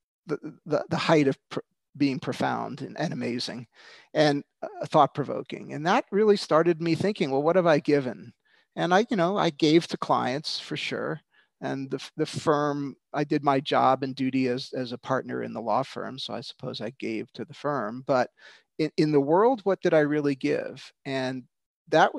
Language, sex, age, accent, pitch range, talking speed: English, male, 40-59, American, 130-165 Hz, 195 wpm